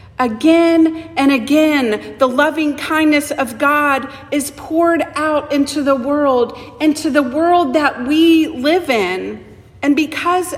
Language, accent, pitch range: English, American, 230-315 Hz